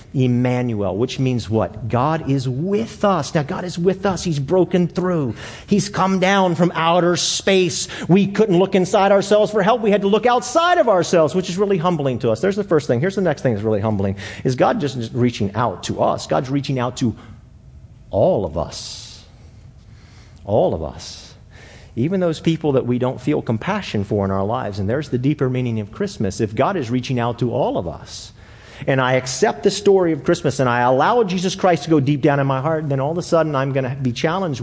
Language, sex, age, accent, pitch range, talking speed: English, male, 40-59, American, 110-160 Hz, 220 wpm